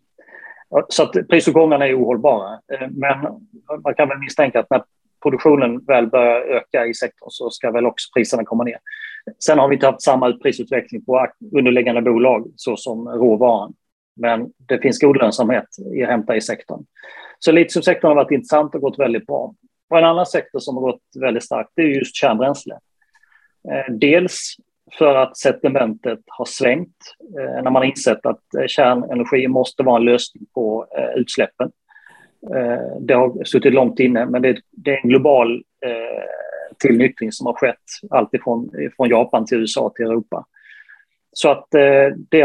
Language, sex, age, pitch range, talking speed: Swedish, male, 30-49, 125-165 Hz, 170 wpm